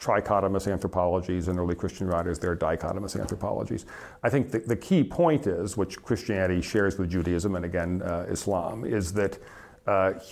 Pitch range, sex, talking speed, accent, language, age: 90-105 Hz, male, 165 wpm, American, English, 40-59